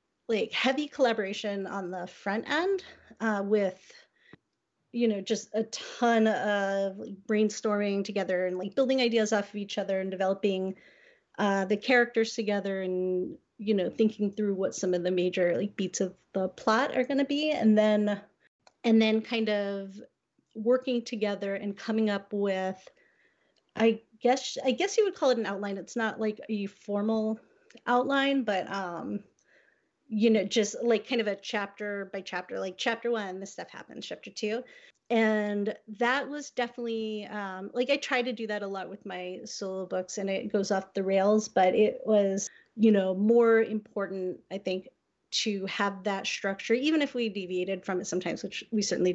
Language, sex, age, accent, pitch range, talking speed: English, female, 30-49, American, 195-230 Hz, 175 wpm